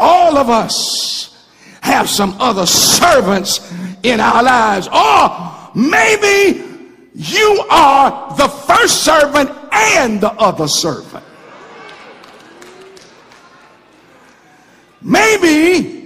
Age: 60-79